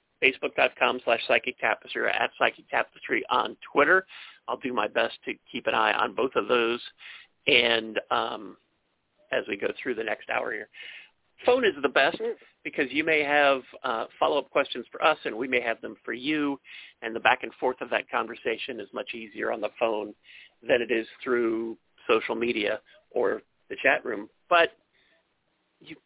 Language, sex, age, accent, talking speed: English, male, 40-59, American, 180 wpm